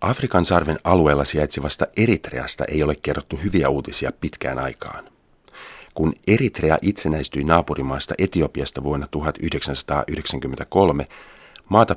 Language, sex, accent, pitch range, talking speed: Finnish, male, native, 70-85 Hz, 100 wpm